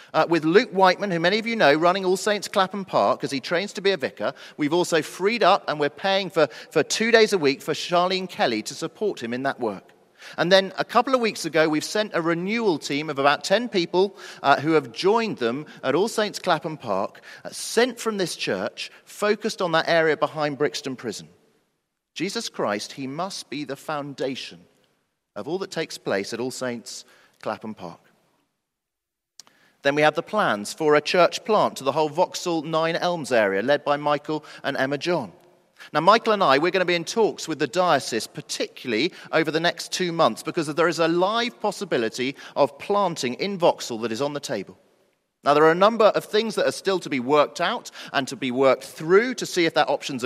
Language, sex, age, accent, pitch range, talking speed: English, male, 40-59, British, 145-195 Hz, 210 wpm